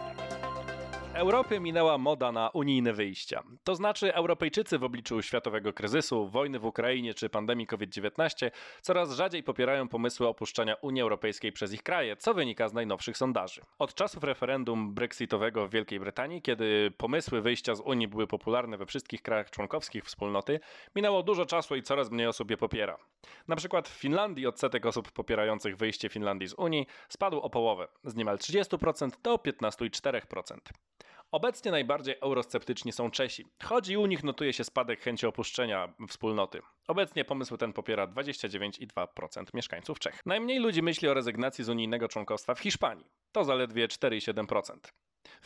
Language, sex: Polish, male